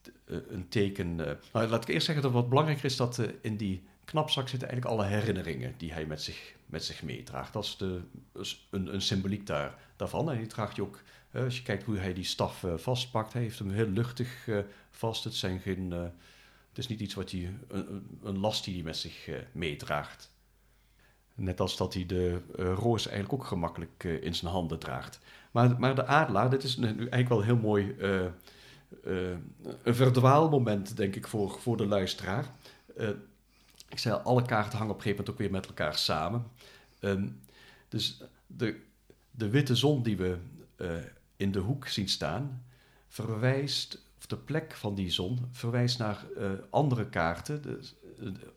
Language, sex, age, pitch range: English, male, 50-69, 95-125 Hz